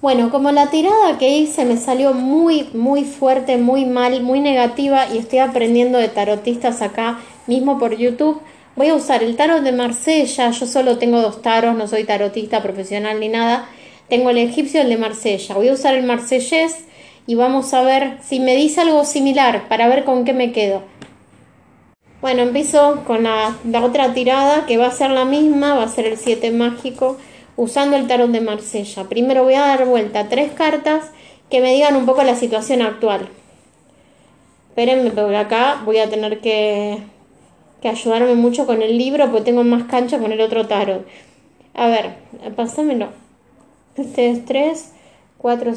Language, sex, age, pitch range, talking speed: Spanish, female, 20-39, 230-275 Hz, 180 wpm